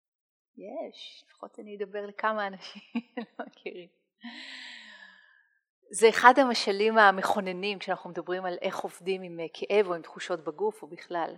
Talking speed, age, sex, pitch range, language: 130 wpm, 30-49, female, 185-240 Hz, Hebrew